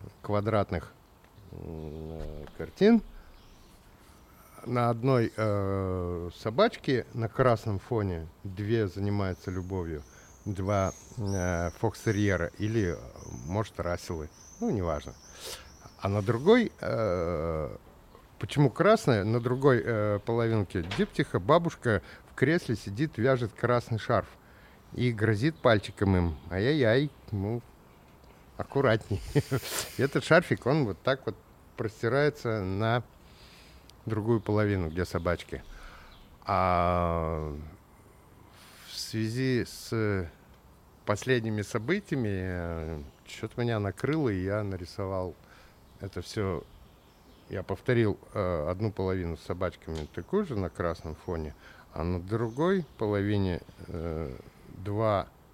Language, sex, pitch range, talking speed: Russian, male, 90-120 Hz, 95 wpm